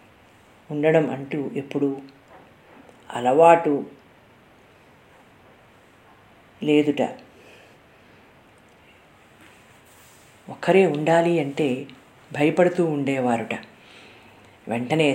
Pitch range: 135-165 Hz